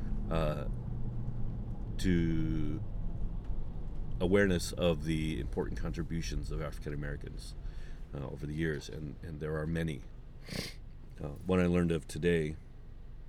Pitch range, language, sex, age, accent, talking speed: 75-95 Hz, English, male, 40-59, American, 115 wpm